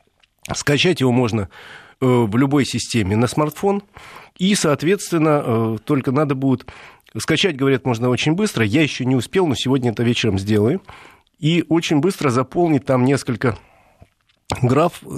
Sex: male